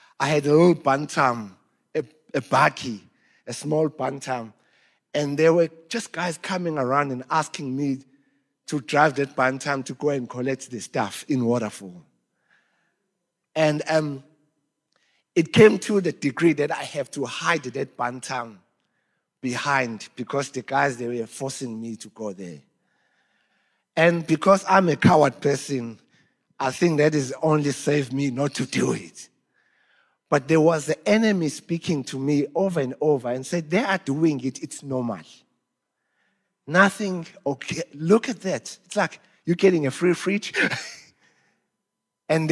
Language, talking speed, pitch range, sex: English, 150 wpm, 135-175 Hz, male